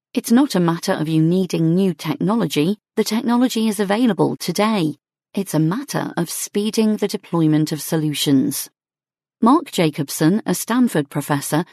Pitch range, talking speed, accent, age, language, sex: 160-210 Hz, 145 wpm, British, 40-59, English, female